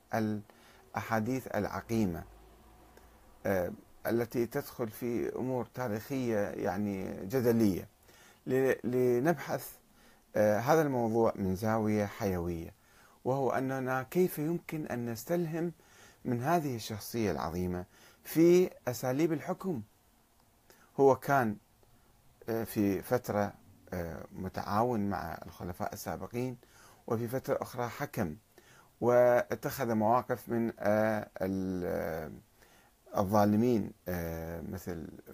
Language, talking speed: Arabic, 75 wpm